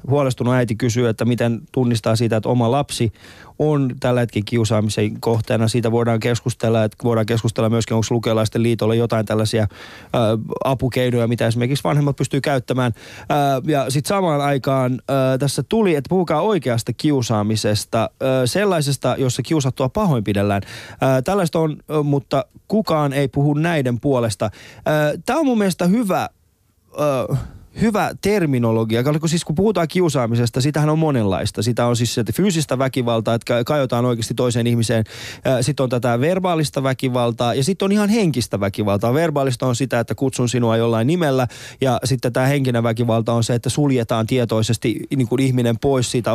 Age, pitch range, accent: 20-39, 115-140 Hz, native